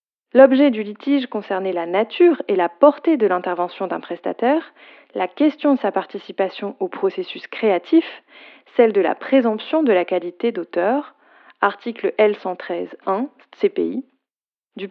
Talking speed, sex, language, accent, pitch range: 135 wpm, female, French, French, 185-255 Hz